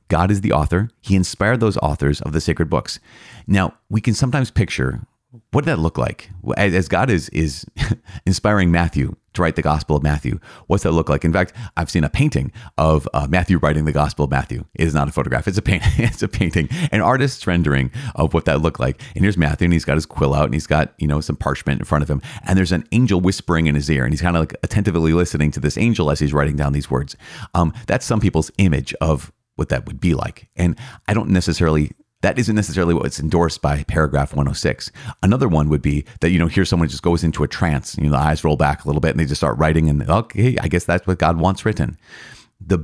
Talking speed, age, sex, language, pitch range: 250 wpm, 30-49, male, English, 75-95 Hz